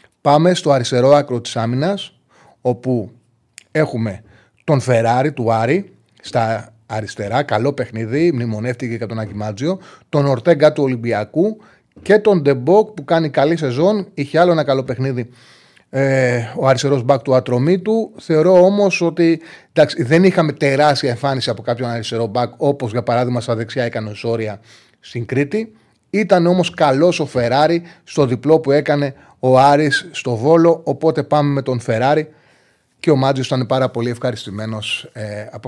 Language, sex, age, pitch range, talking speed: Greek, male, 30-49, 120-150 Hz, 150 wpm